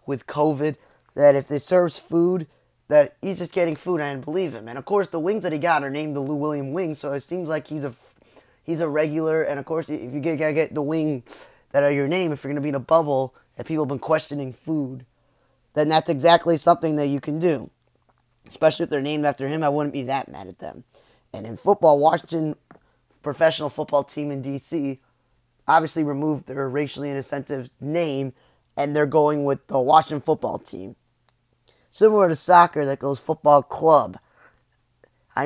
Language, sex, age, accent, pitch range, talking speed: English, male, 20-39, American, 140-160 Hz, 205 wpm